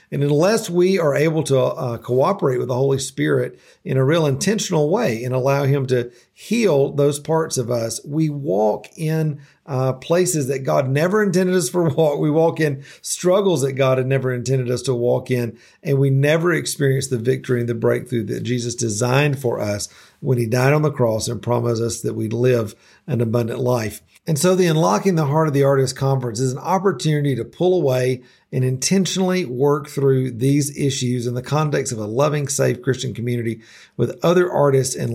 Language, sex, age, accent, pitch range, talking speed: English, male, 50-69, American, 125-150 Hz, 195 wpm